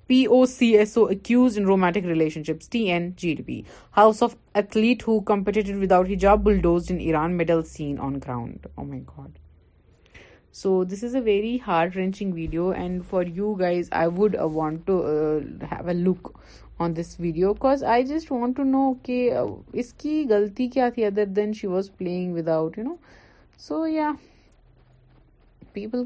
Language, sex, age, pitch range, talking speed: Urdu, female, 30-49, 170-235 Hz, 150 wpm